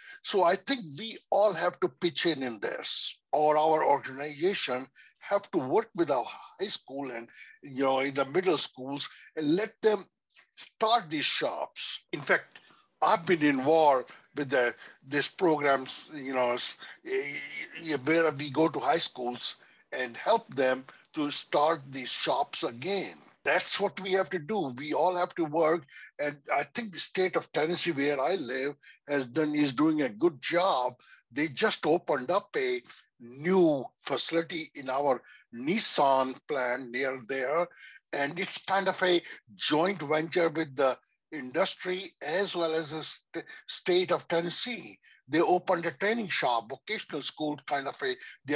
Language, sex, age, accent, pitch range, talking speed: English, male, 60-79, Indian, 140-190 Hz, 160 wpm